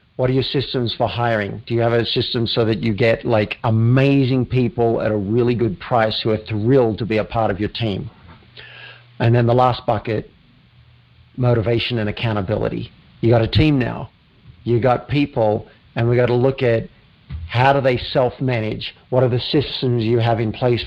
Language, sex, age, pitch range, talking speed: English, male, 50-69, 110-135 Hz, 195 wpm